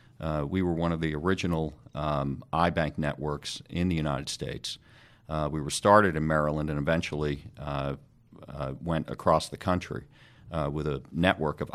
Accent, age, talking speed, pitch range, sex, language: American, 50-69, 175 wpm, 80-95 Hz, male, English